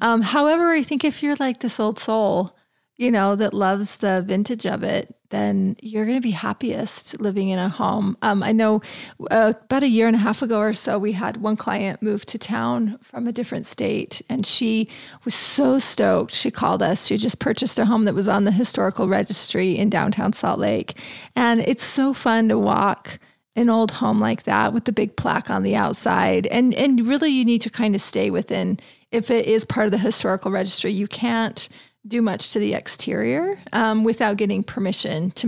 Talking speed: 210 wpm